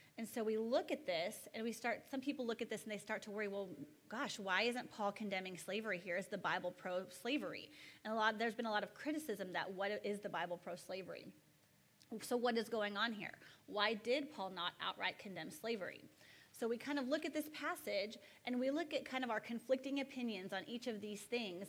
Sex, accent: female, American